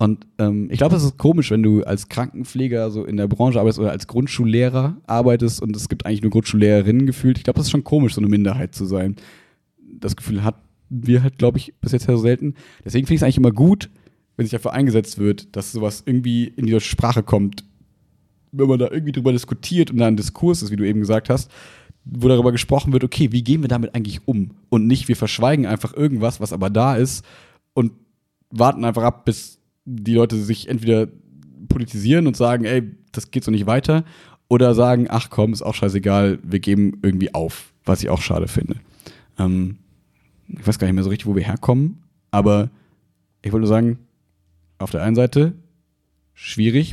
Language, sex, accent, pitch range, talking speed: German, male, German, 105-130 Hz, 205 wpm